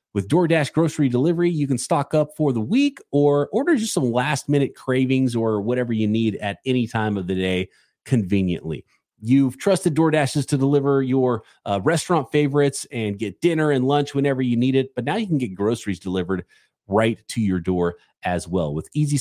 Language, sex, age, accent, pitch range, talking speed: English, male, 30-49, American, 110-160 Hz, 190 wpm